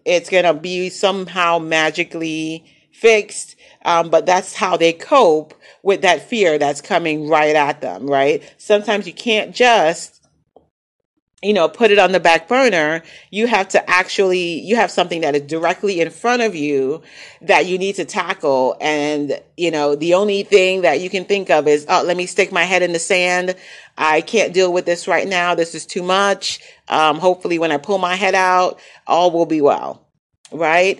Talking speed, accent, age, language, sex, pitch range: 190 wpm, American, 40-59, English, female, 160-200 Hz